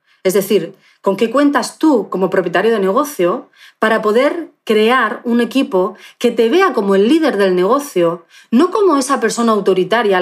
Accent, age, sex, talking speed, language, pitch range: Spanish, 30-49, female, 170 wpm, Spanish, 185-235 Hz